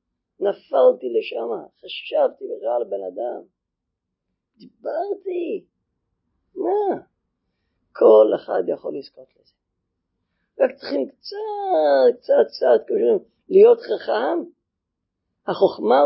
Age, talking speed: 40-59, 90 wpm